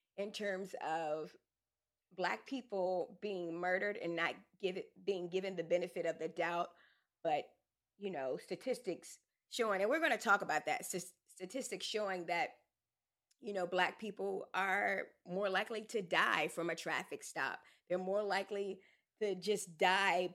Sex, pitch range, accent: female, 175-205 Hz, American